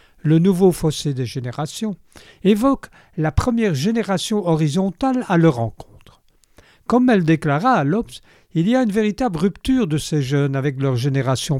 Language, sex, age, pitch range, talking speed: French, male, 60-79, 145-225 Hz, 155 wpm